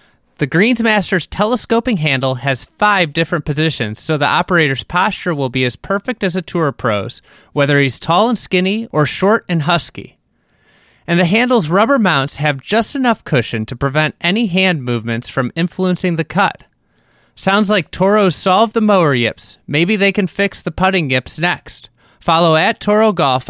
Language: English